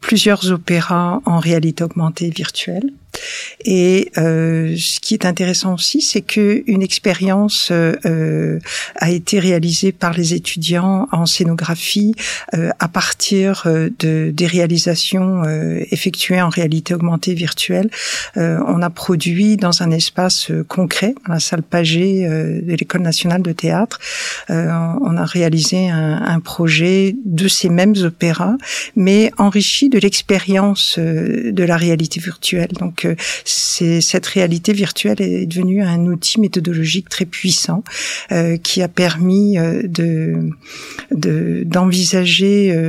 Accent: French